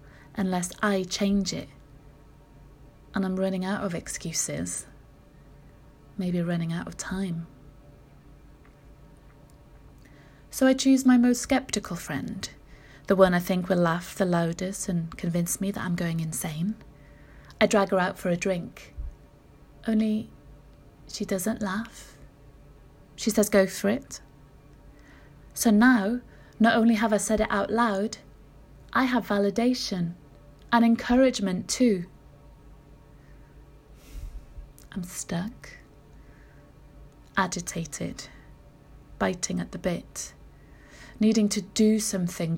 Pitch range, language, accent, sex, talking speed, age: 145-215 Hz, English, British, female, 115 wpm, 30-49